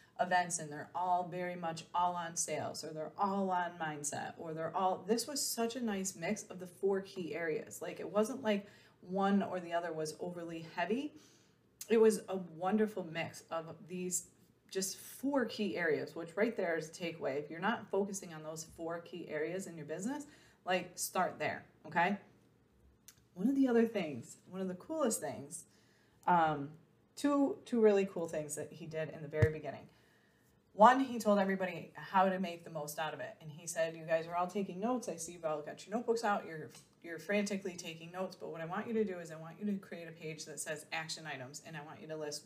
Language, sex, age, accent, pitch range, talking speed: English, female, 20-39, American, 160-205 Hz, 220 wpm